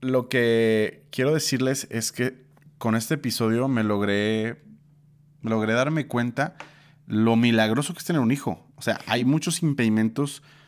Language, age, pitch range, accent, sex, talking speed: Spanish, 30-49, 105-140 Hz, Mexican, male, 145 wpm